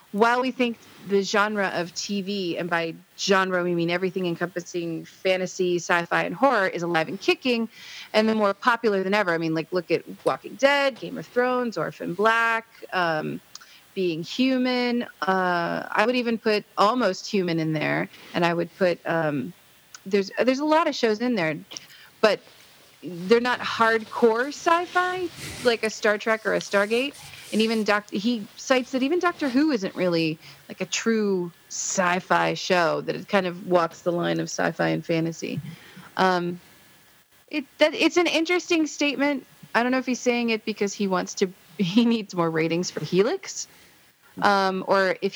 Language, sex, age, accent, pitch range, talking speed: English, female, 30-49, American, 170-230 Hz, 175 wpm